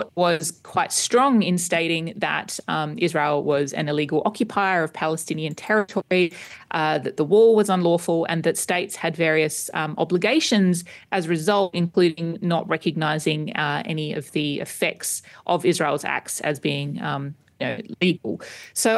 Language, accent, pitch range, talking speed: English, Australian, 155-190 Hz, 150 wpm